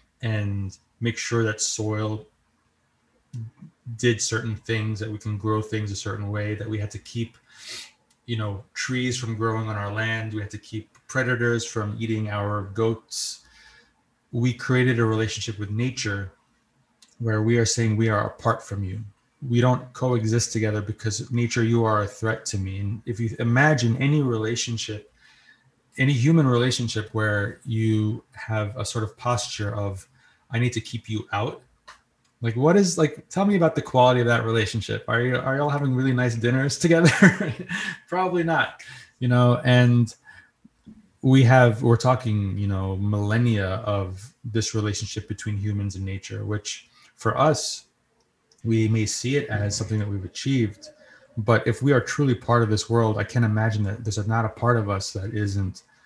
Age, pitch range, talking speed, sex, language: 30-49, 105-125 Hz, 175 wpm, male, English